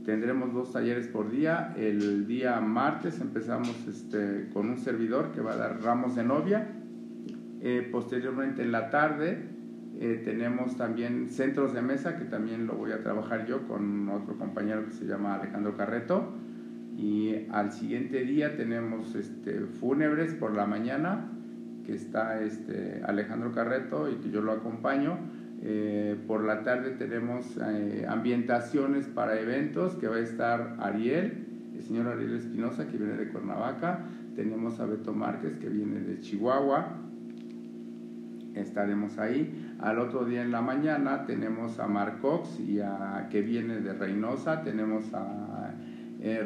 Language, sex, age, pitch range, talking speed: Spanish, male, 50-69, 110-125 Hz, 150 wpm